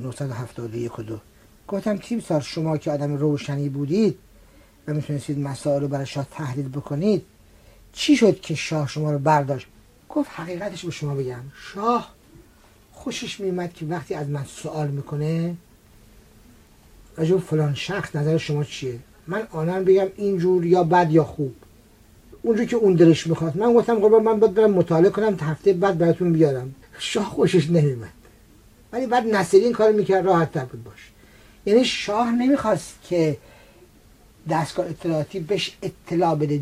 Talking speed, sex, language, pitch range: 145 wpm, male, English, 145-205 Hz